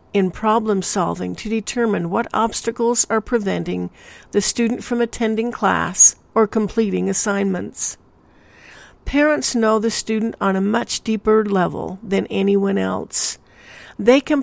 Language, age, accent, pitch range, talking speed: English, 60-79, American, 195-230 Hz, 130 wpm